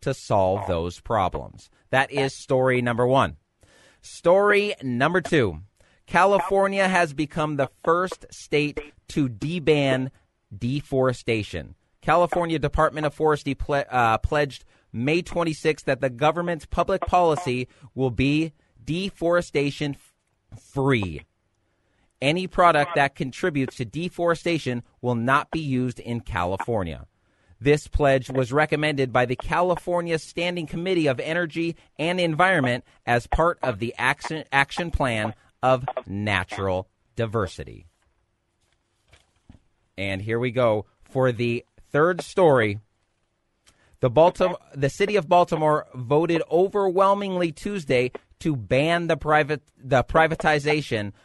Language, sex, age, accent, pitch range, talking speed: English, male, 30-49, American, 115-160 Hz, 115 wpm